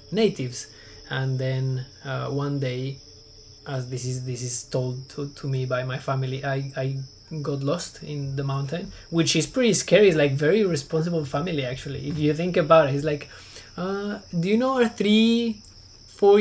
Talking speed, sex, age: 180 wpm, male, 20-39